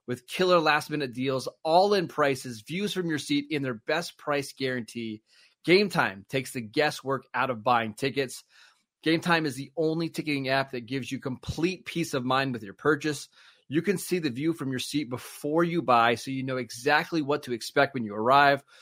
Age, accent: 30-49, American